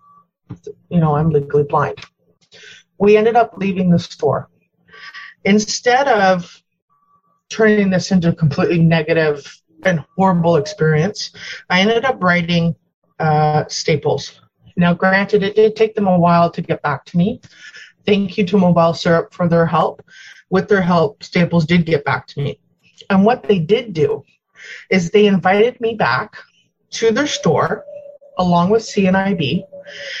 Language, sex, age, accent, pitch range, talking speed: English, female, 30-49, American, 160-200 Hz, 150 wpm